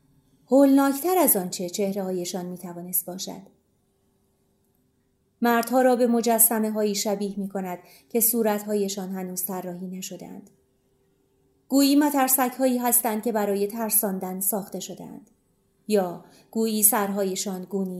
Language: Persian